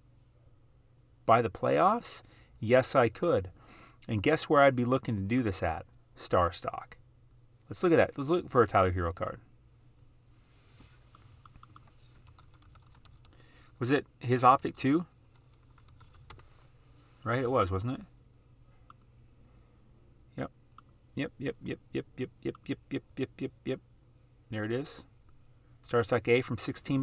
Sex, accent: male, American